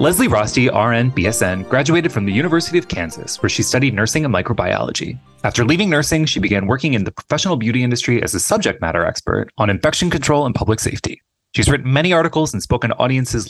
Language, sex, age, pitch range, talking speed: English, male, 20-39, 105-150 Hz, 205 wpm